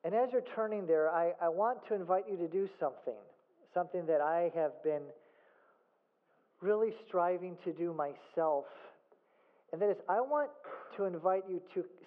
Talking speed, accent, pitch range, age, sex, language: 165 wpm, American, 170-265 Hz, 40-59, male, English